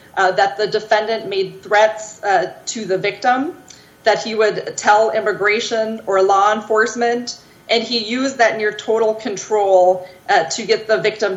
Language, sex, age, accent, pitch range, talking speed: English, female, 30-49, American, 195-230 Hz, 160 wpm